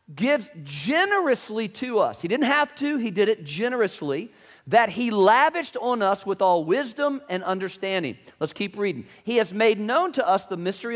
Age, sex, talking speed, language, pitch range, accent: 40-59, male, 180 wpm, English, 195-270 Hz, American